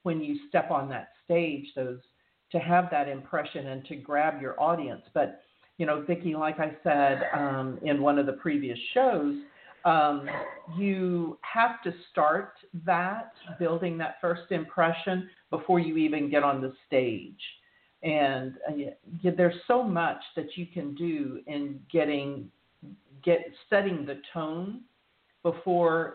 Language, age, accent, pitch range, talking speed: English, 50-69, American, 140-175 Hz, 145 wpm